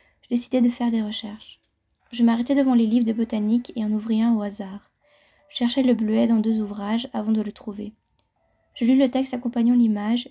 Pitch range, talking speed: 220-245 Hz, 210 wpm